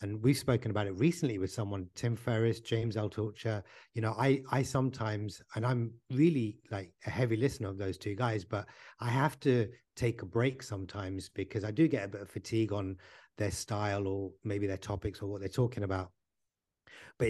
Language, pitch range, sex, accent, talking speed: English, 105-130 Hz, male, British, 200 wpm